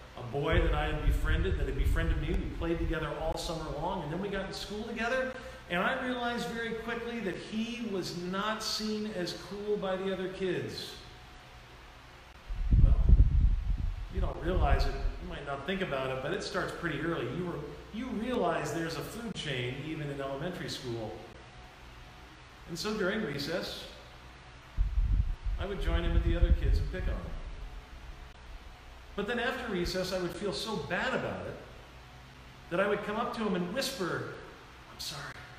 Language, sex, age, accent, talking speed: English, male, 40-59, American, 175 wpm